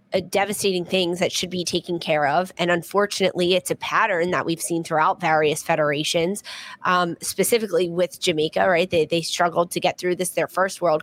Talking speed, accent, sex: 185 wpm, American, female